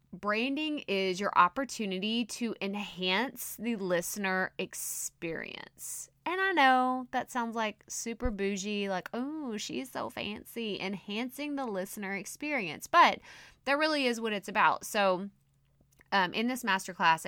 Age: 20-39